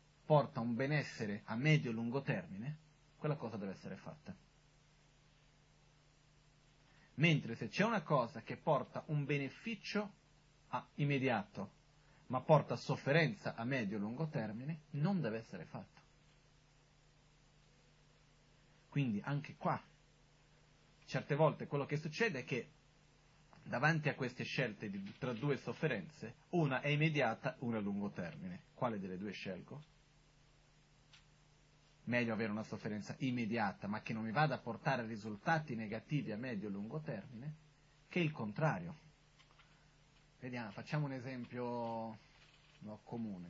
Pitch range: 130-155 Hz